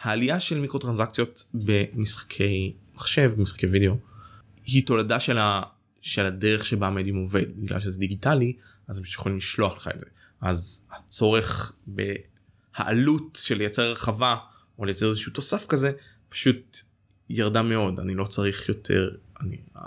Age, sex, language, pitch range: 20-39, male, Hebrew, 100-120 Hz